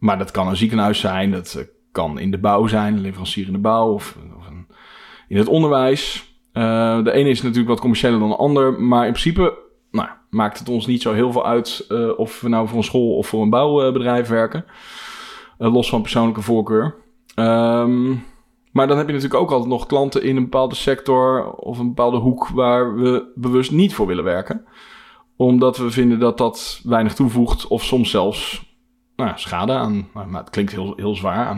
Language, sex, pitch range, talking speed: Dutch, male, 110-135 Hz, 205 wpm